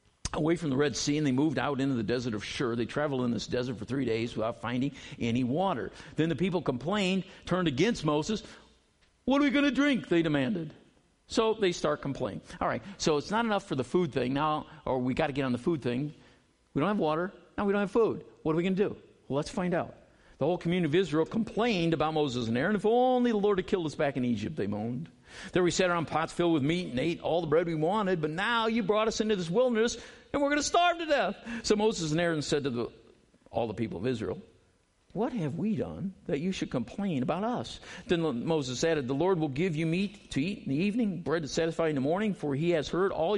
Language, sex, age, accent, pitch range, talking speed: English, male, 50-69, American, 135-200 Hz, 255 wpm